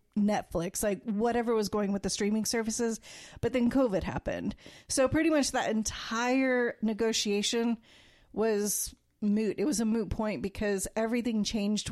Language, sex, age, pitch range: English, female, 30-49, 205-240 Hz